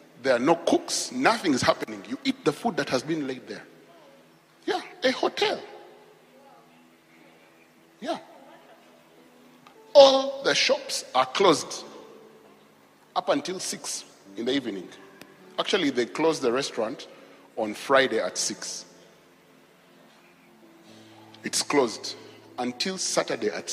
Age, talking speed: 40-59, 115 wpm